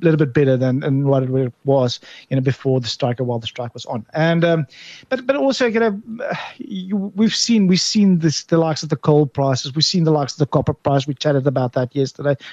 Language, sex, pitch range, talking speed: English, male, 140-180 Hz, 245 wpm